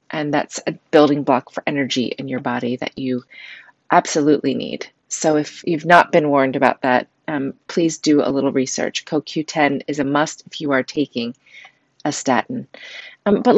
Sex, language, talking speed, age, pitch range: female, English, 175 wpm, 30-49, 150-200 Hz